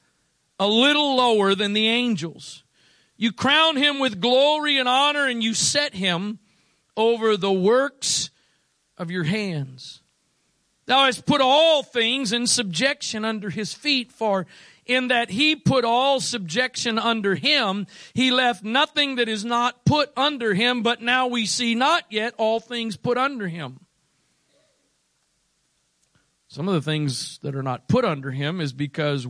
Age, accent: 40-59, American